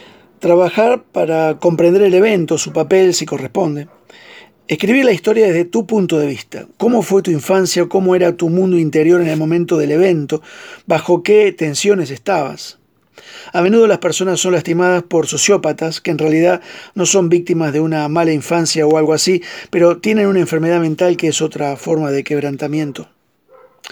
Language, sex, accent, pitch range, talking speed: Spanish, male, Argentinian, 155-185 Hz, 170 wpm